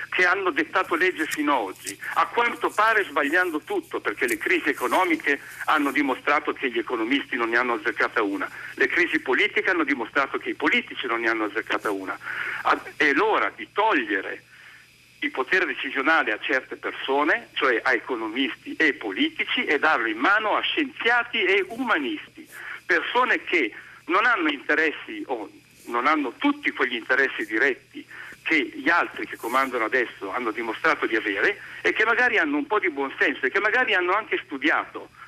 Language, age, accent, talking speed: Italian, 60-79, native, 165 wpm